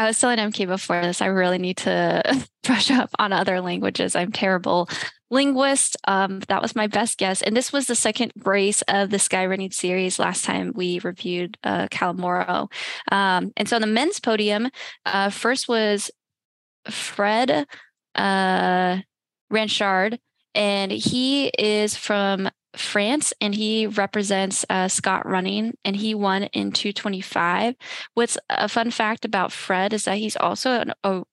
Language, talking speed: English, 155 wpm